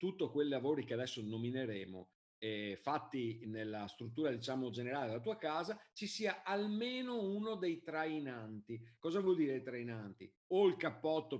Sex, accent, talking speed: male, native, 145 wpm